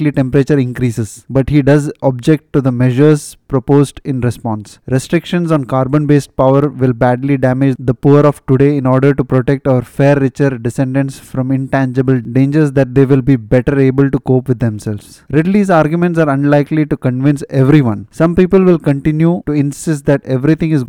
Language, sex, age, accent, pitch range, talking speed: English, male, 20-39, Indian, 130-155 Hz, 170 wpm